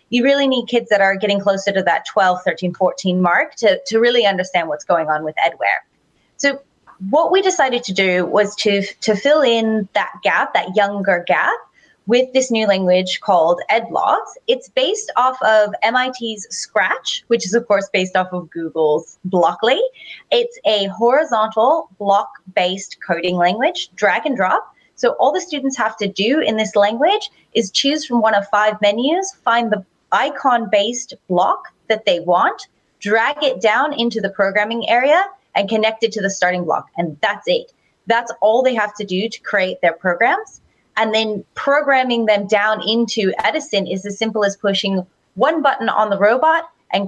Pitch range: 195-260 Hz